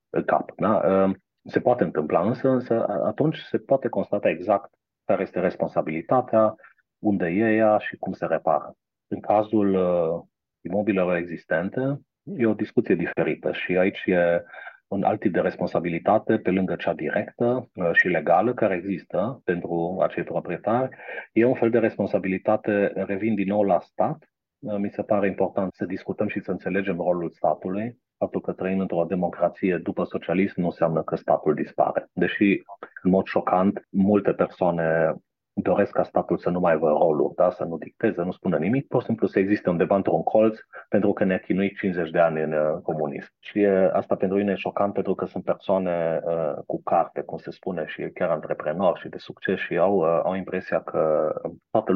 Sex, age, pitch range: male, 40-59, 85-105 Hz